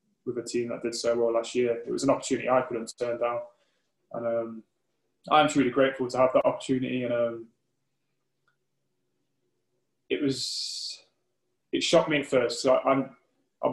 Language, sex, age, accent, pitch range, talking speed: English, male, 20-39, British, 120-135 Hz, 170 wpm